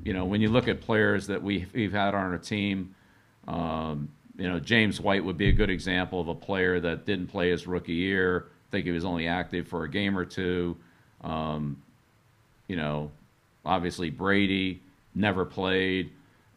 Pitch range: 90-110 Hz